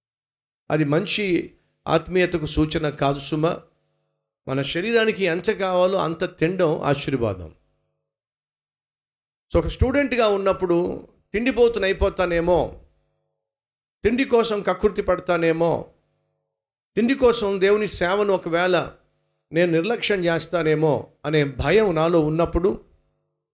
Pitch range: 145-185 Hz